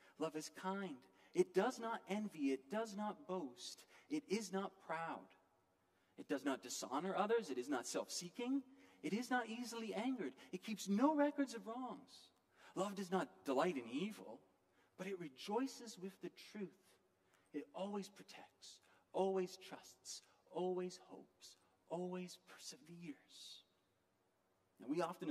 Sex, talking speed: male, 140 wpm